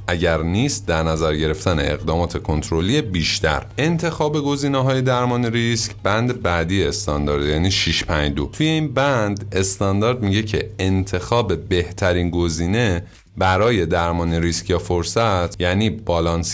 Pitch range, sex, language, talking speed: 85-115 Hz, male, Persian, 120 wpm